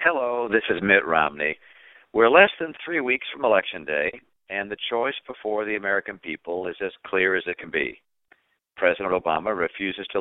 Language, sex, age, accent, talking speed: English, male, 50-69, American, 180 wpm